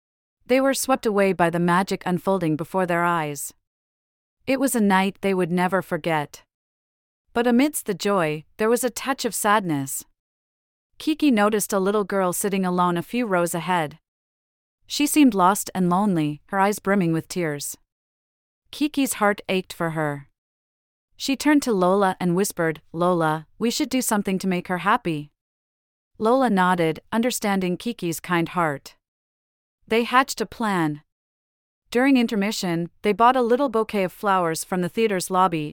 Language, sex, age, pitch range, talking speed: English, female, 40-59, 155-215 Hz, 155 wpm